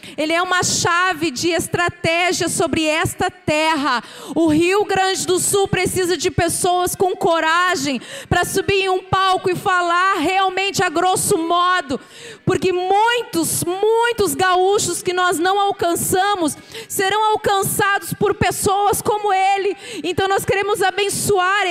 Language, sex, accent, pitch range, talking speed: Portuguese, female, Brazilian, 320-380 Hz, 135 wpm